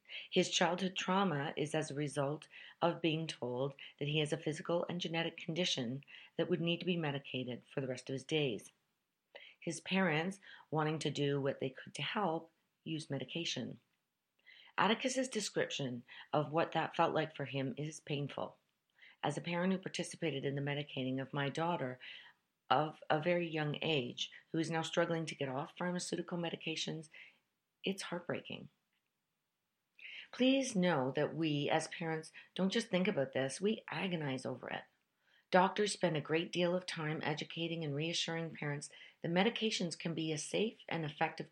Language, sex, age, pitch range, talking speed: English, female, 50-69, 145-175 Hz, 165 wpm